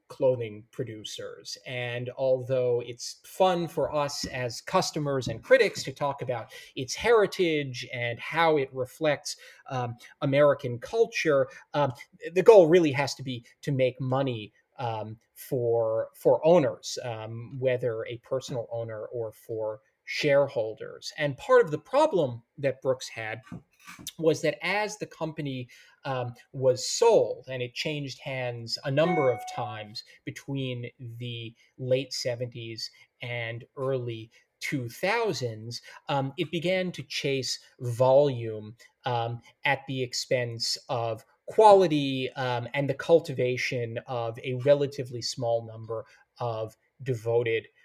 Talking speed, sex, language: 125 wpm, male, English